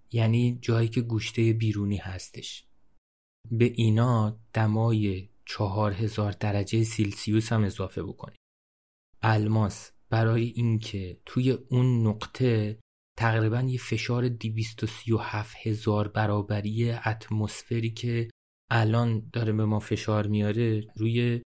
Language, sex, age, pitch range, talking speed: Persian, male, 30-49, 105-115 Hz, 115 wpm